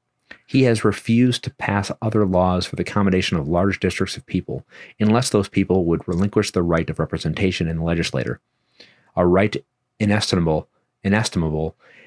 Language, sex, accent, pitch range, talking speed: English, male, American, 85-105 Hz, 155 wpm